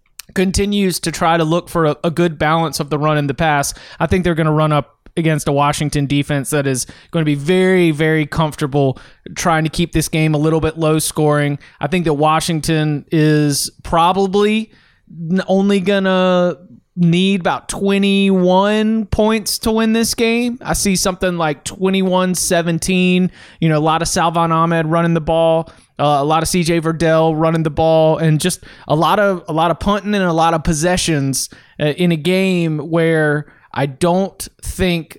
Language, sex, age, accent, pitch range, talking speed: English, male, 30-49, American, 150-185 Hz, 185 wpm